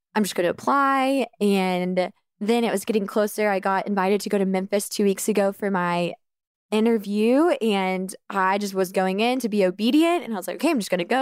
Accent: American